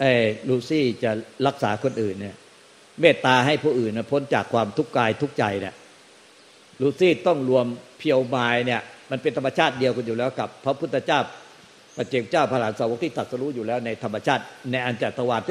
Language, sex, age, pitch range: Thai, male, 60-79, 115-140 Hz